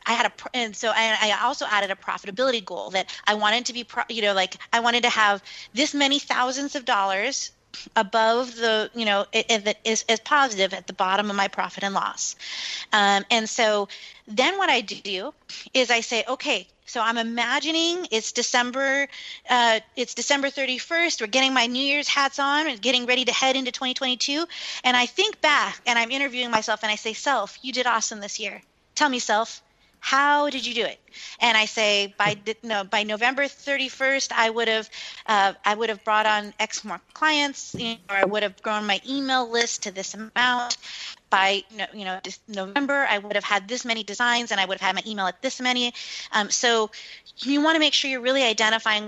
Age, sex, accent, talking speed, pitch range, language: 30-49, female, American, 205 wpm, 205-260 Hz, English